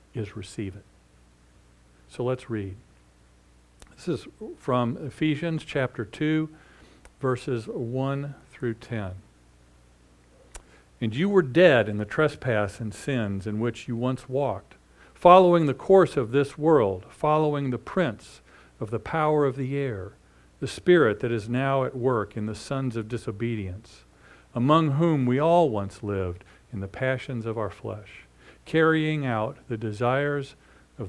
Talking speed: 145 wpm